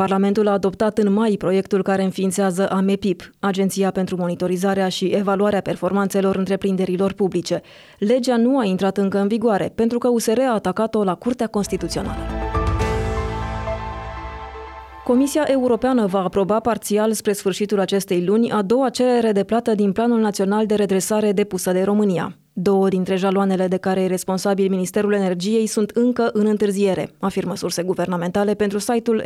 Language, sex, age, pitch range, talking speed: Romanian, female, 20-39, 185-215 Hz, 150 wpm